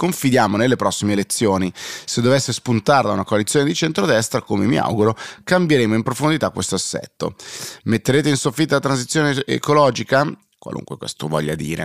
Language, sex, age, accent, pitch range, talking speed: Italian, male, 30-49, native, 100-125 Hz, 145 wpm